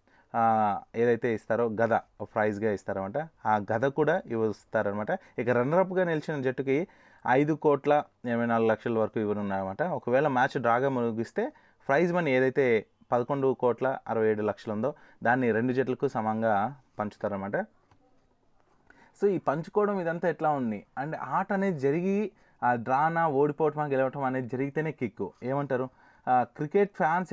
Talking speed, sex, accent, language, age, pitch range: 125 wpm, male, native, Telugu, 30-49, 110-145 Hz